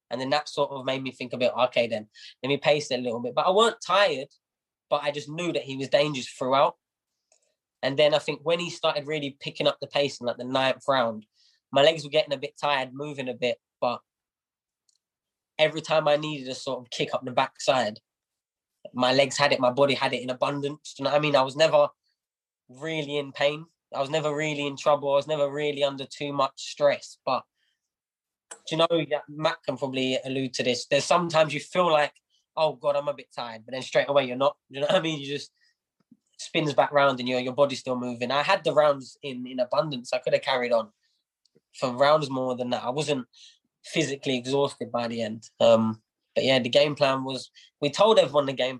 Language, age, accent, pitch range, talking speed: English, 10-29, British, 130-155 Hz, 225 wpm